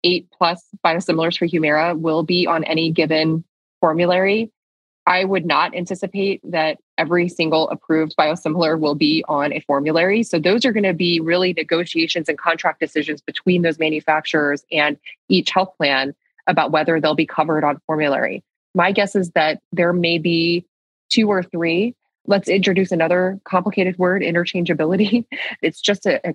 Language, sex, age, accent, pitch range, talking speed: English, female, 20-39, American, 155-180 Hz, 160 wpm